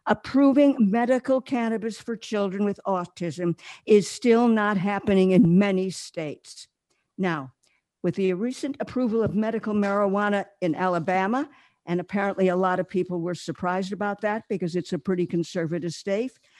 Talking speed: 145 wpm